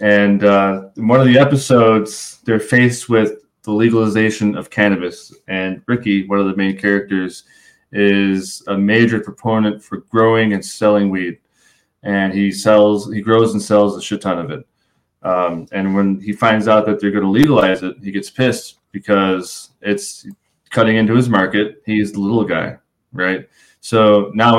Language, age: English, 20-39